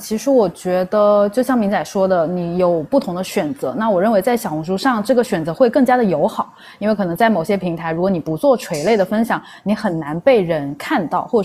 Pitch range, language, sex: 180-235 Hz, Chinese, female